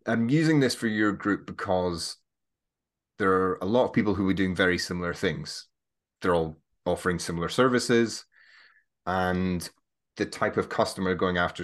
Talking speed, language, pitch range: 160 wpm, English, 90-120 Hz